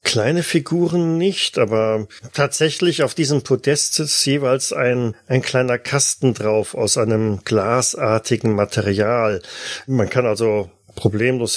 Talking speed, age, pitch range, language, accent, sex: 120 wpm, 40-59, 110-140 Hz, German, German, male